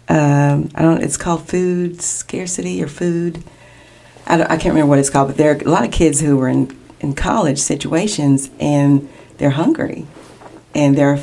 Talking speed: 195 wpm